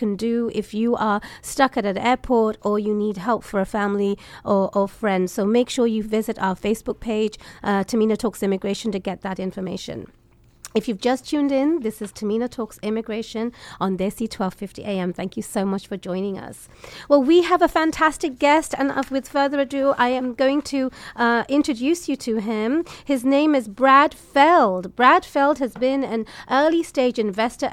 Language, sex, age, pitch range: English, female, 30-49, 205-265 Hz